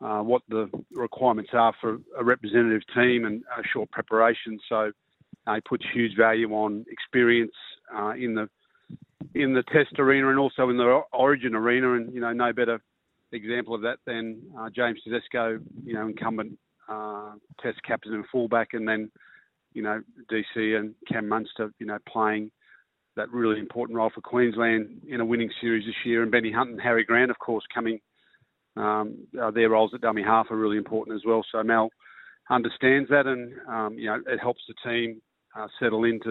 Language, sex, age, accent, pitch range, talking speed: English, male, 40-59, Australian, 110-120 Hz, 185 wpm